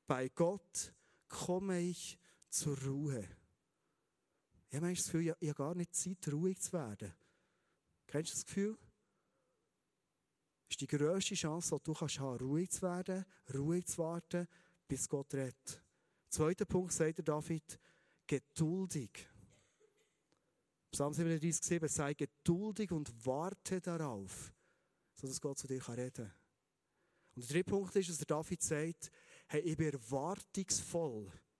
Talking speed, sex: 135 wpm, male